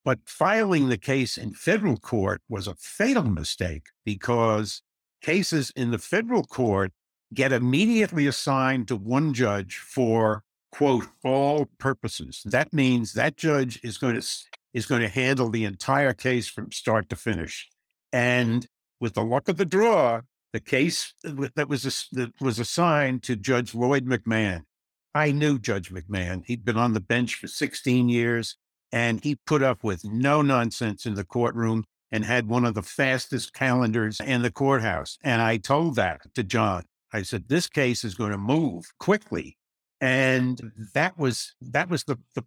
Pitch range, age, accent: 110-140 Hz, 60-79, American